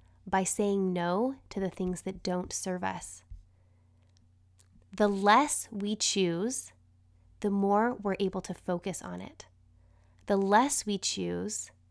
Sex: female